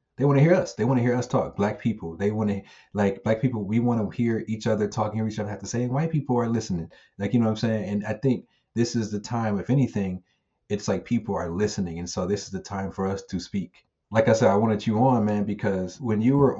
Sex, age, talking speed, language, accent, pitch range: male, 30-49, 280 wpm, English, American, 90-110 Hz